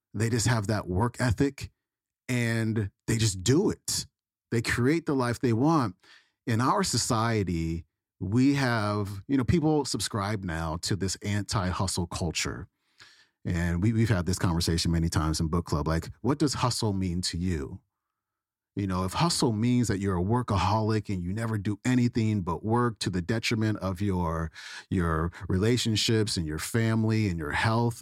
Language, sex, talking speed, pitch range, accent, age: English, male, 165 wpm, 90-120 Hz, American, 40-59